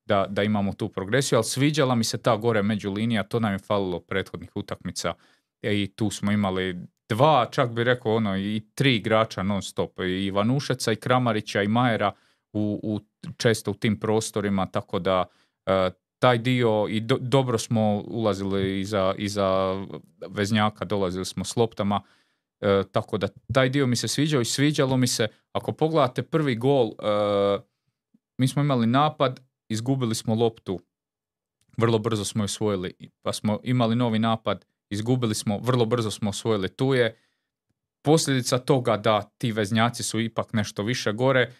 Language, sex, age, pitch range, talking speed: Croatian, male, 30-49, 100-120 Hz, 165 wpm